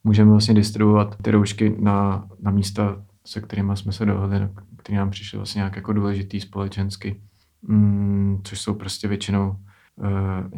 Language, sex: Czech, male